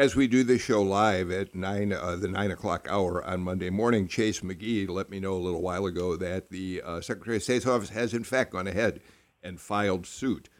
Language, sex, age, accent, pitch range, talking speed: English, male, 60-79, American, 95-115 Hz, 225 wpm